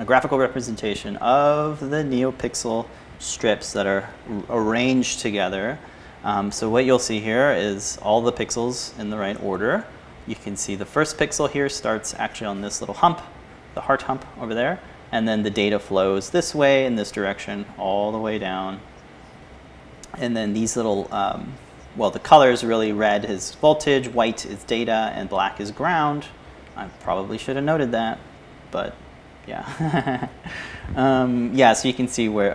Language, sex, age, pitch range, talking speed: English, male, 30-49, 100-130 Hz, 170 wpm